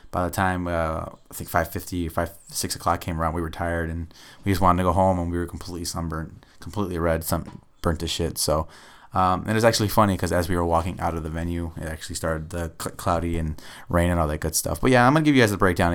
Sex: male